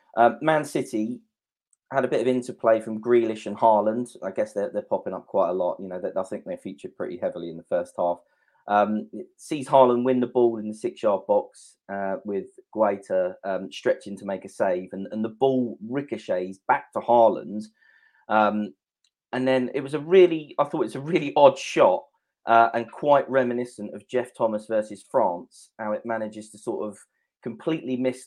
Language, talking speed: English, 200 wpm